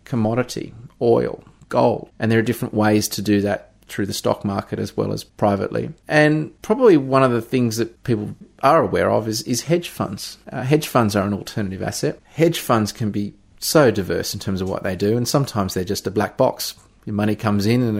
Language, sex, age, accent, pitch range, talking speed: English, male, 30-49, Australian, 100-115 Hz, 215 wpm